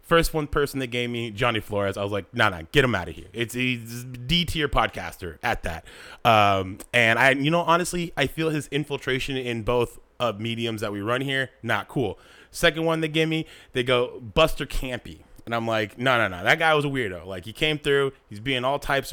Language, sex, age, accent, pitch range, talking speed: English, male, 30-49, American, 105-140 Hz, 235 wpm